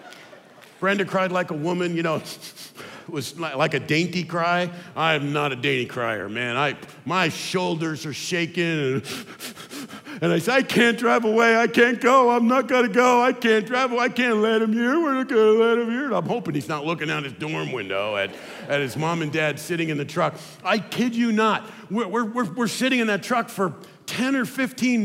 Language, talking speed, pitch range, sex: English, 215 wpm, 160-235 Hz, male